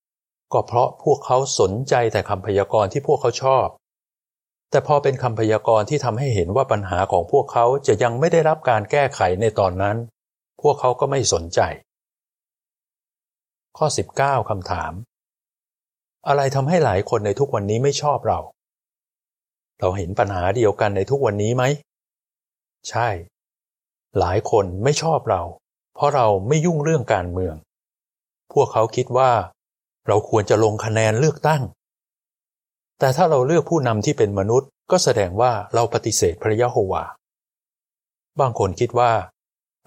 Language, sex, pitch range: Thai, male, 105-140 Hz